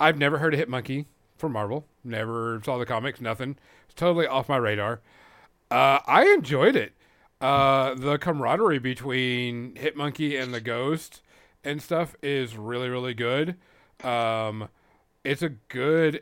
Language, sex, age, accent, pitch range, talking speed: English, male, 40-59, American, 120-160 Hz, 150 wpm